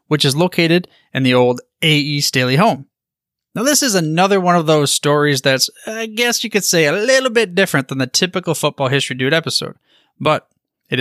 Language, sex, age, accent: English, male, 30-49, American